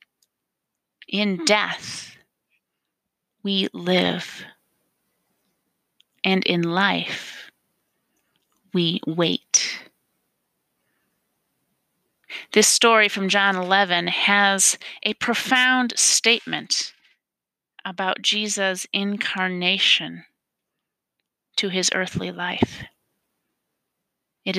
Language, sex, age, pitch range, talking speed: English, female, 30-49, 185-220 Hz, 65 wpm